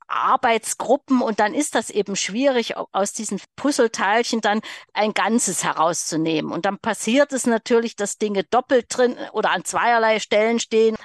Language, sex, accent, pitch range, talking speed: German, female, German, 210-255 Hz, 150 wpm